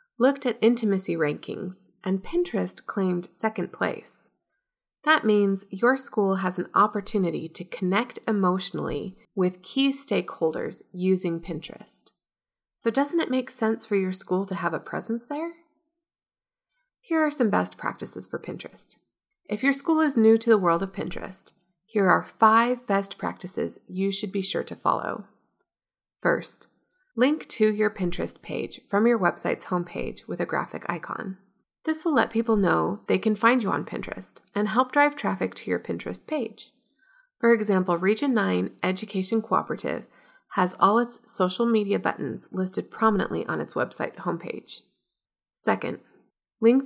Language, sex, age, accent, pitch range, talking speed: English, female, 30-49, American, 190-255 Hz, 150 wpm